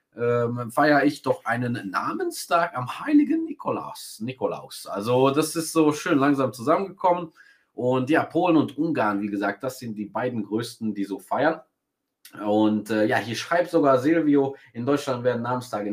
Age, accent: 30-49, German